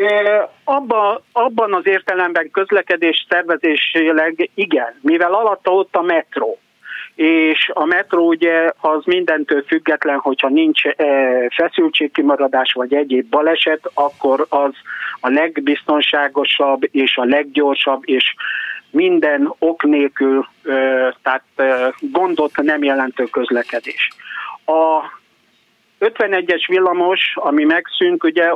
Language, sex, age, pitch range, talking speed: Hungarian, male, 50-69, 140-185 Hz, 100 wpm